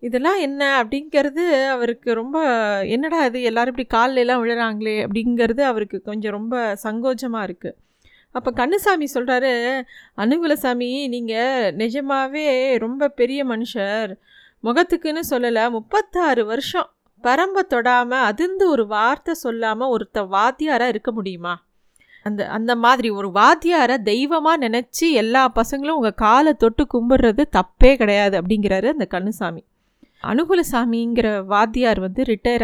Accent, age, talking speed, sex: native, 30-49, 115 wpm, female